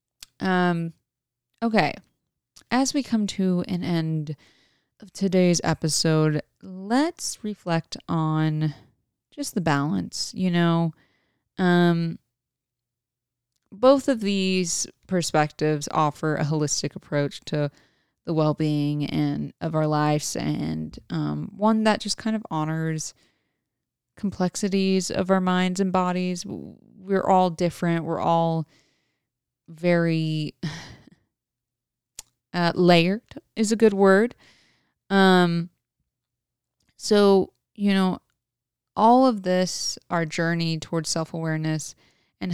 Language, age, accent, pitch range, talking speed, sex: English, 20-39, American, 155-195 Hz, 105 wpm, female